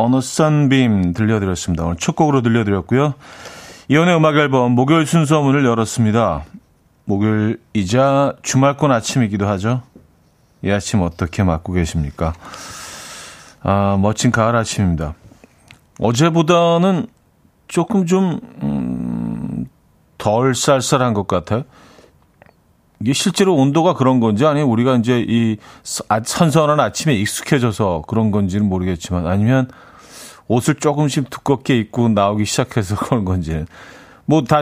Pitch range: 95-140 Hz